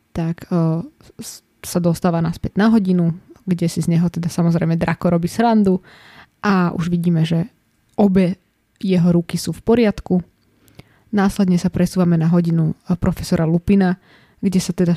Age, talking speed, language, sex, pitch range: 20-39, 140 wpm, Slovak, female, 170-195 Hz